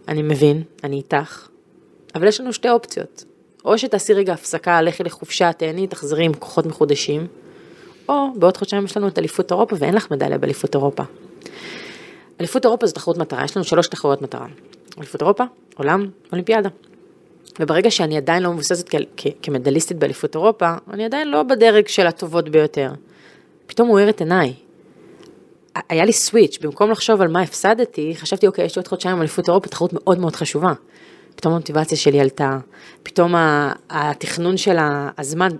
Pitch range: 155-200 Hz